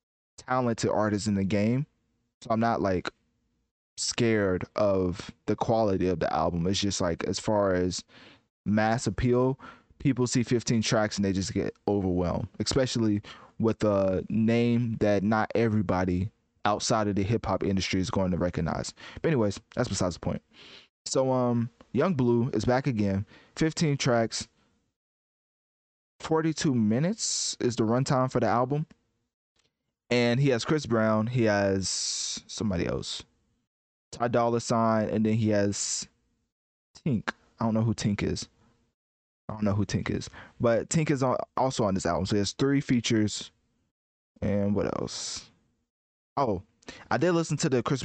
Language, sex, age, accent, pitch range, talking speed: English, male, 20-39, American, 100-120 Hz, 155 wpm